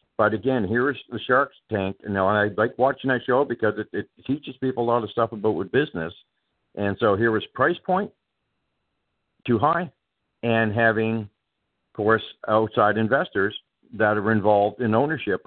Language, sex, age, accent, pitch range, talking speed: English, male, 50-69, American, 105-130 Hz, 170 wpm